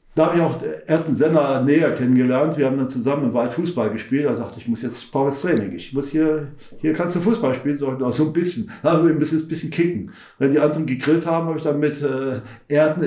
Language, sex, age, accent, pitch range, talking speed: German, male, 50-69, German, 140-180 Hz, 245 wpm